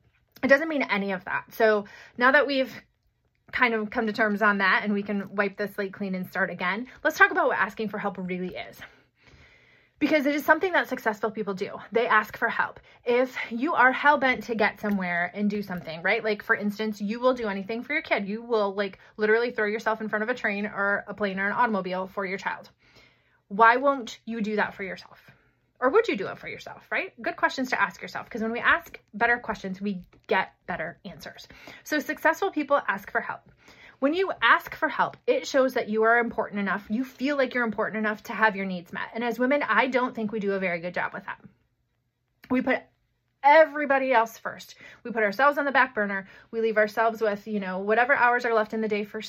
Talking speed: 230 wpm